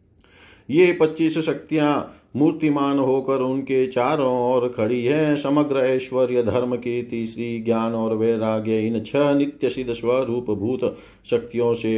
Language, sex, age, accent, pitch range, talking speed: Hindi, male, 40-59, native, 115-135 Hz, 125 wpm